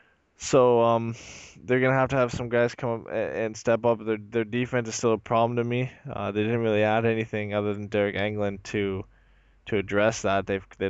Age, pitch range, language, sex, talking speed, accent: 10-29, 100-115 Hz, English, male, 215 wpm, American